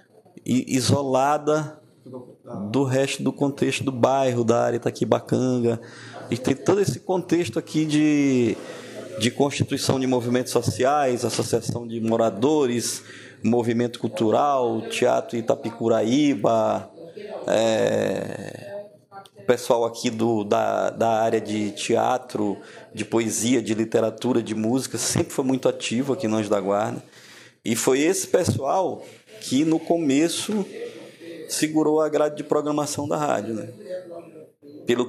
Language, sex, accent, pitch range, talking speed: Portuguese, male, Brazilian, 115-150 Hz, 120 wpm